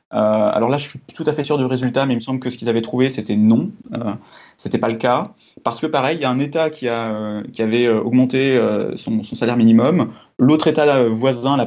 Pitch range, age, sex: 115-135 Hz, 20-39, male